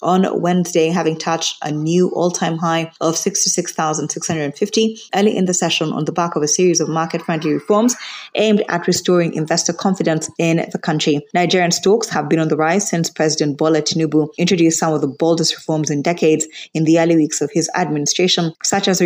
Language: English